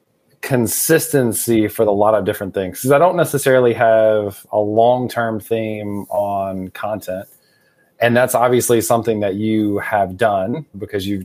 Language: English